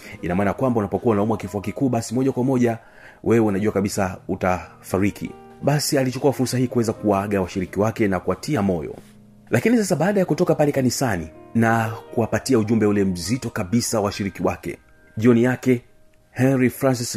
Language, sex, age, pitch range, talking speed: Swahili, male, 40-59, 100-125 Hz, 160 wpm